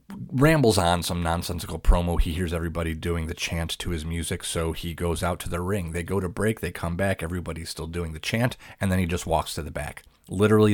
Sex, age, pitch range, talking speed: male, 30-49, 80-95 Hz, 235 wpm